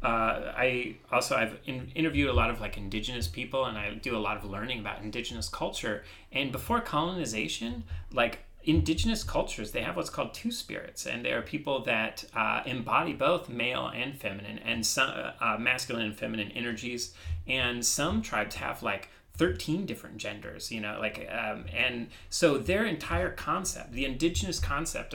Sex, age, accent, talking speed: male, 30-49, American, 170 wpm